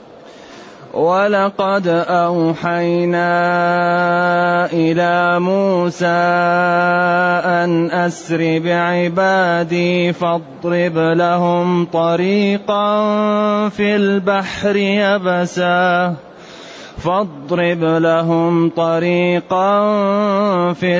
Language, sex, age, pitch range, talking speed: Arabic, male, 30-49, 170-180 Hz, 50 wpm